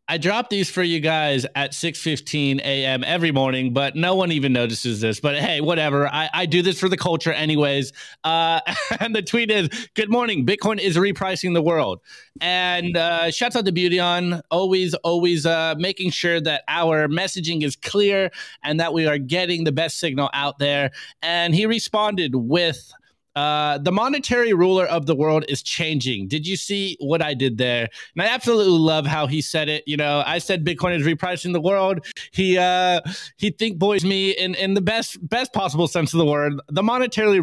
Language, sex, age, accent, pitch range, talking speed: English, male, 30-49, American, 150-190 Hz, 195 wpm